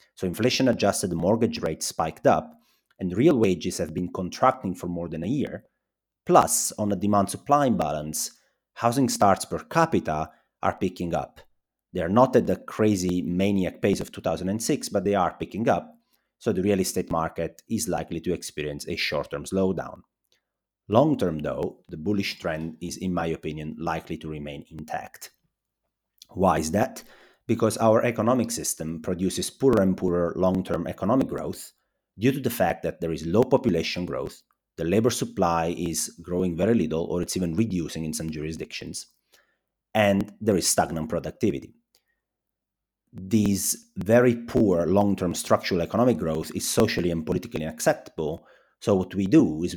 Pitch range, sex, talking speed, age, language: 85-105 Hz, male, 155 wpm, 30-49, English